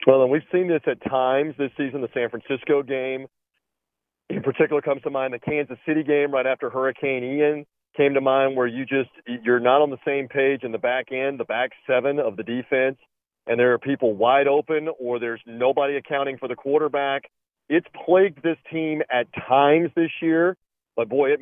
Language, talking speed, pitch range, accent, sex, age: English, 200 wpm, 130-155 Hz, American, male, 40-59